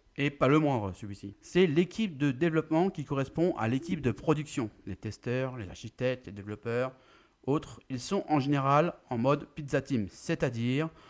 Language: French